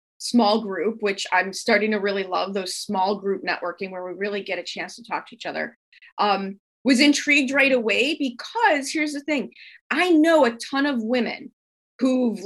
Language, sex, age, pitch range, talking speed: English, female, 30-49, 200-265 Hz, 190 wpm